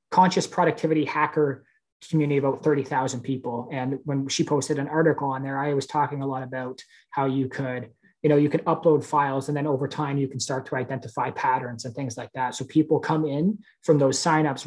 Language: English